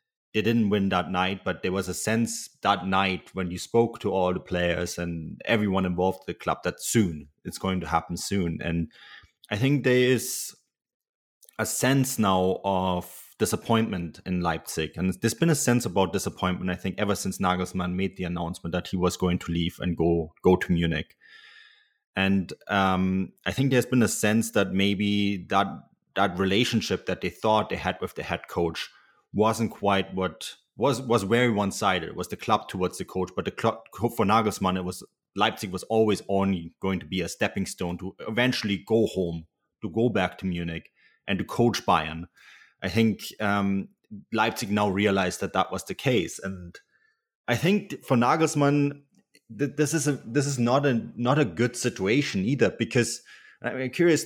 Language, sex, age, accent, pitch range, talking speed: English, male, 30-49, German, 90-115 Hz, 190 wpm